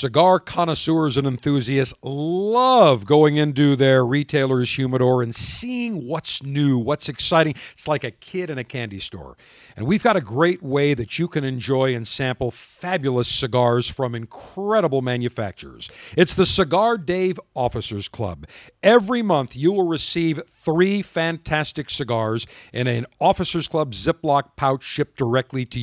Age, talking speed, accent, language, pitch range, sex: 50-69, 150 wpm, American, English, 130-180 Hz, male